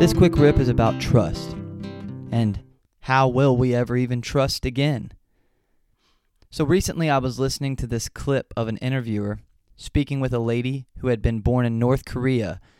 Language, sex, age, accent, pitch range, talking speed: English, male, 20-39, American, 110-145 Hz, 170 wpm